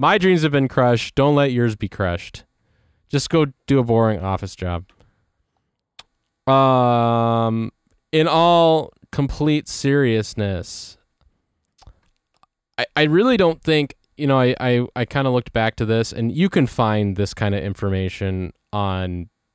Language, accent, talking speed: English, American, 145 wpm